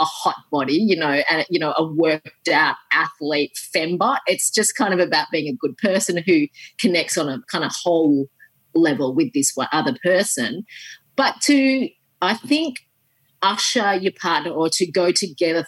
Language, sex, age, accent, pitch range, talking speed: English, female, 30-49, Australian, 175-230 Hz, 170 wpm